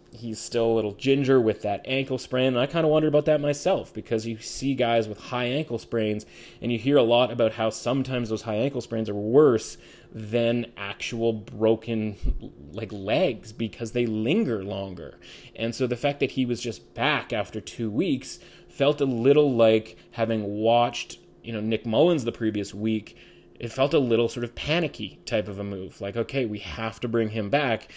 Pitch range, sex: 110-130 Hz, male